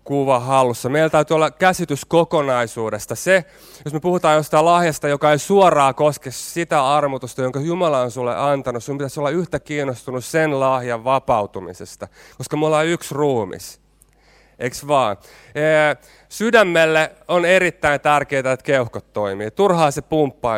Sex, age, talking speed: male, 30-49, 145 wpm